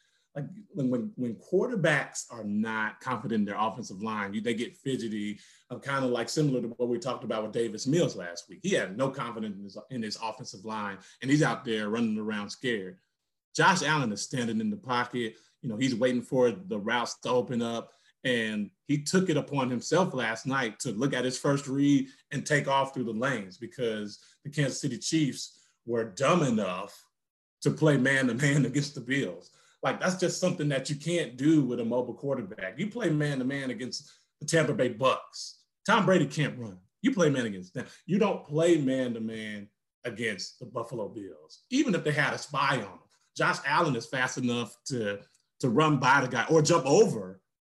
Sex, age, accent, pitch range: male, 30-49, American, 115-145 Hz